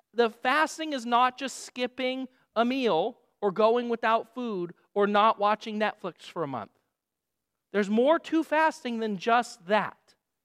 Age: 40-59